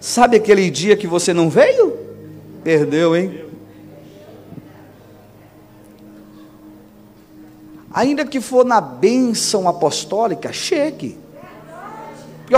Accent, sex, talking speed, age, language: Brazilian, male, 80 wpm, 40-59, Portuguese